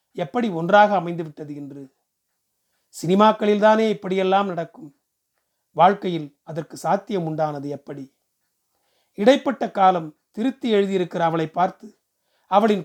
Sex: male